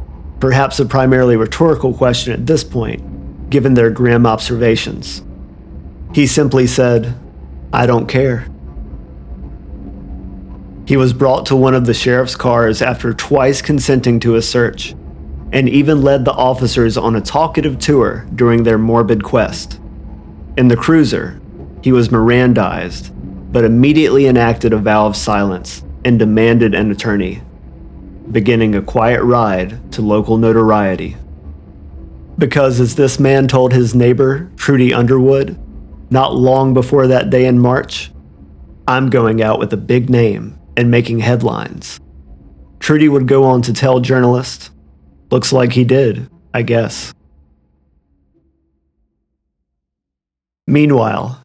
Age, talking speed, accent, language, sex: 40-59, 130 wpm, American, English, male